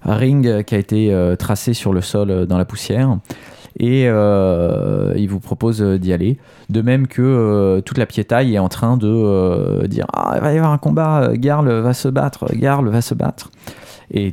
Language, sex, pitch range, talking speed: French, male, 100-130 Hz, 210 wpm